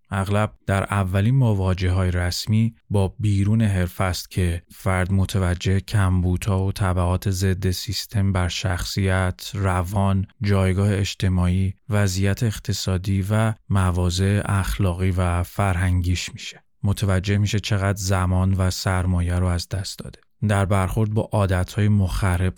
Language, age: Persian, 30-49